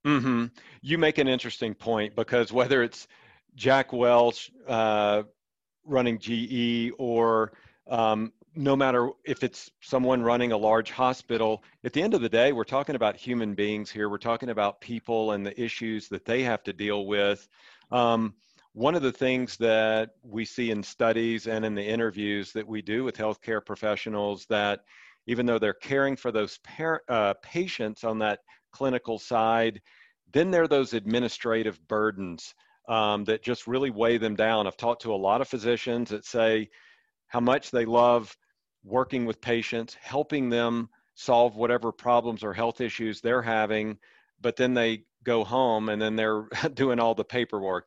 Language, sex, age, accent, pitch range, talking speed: English, male, 40-59, American, 110-125 Hz, 170 wpm